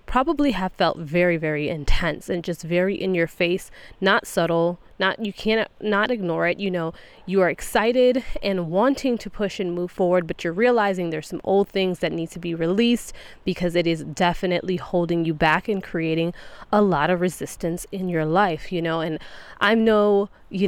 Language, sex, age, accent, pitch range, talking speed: English, female, 20-39, American, 170-200 Hz, 190 wpm